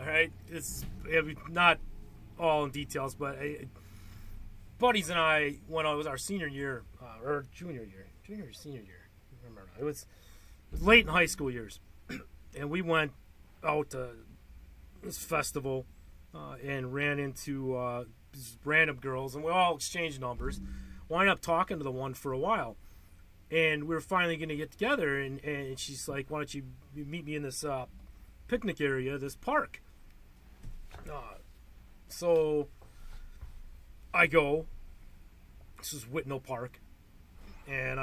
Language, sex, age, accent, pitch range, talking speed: English, male, 30-49, American, 95-160 Hz, 155 wpm